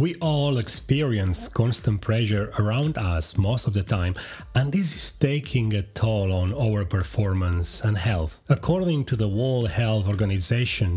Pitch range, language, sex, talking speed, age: 100-130 Hz, English, male, 155 wpm, 30-49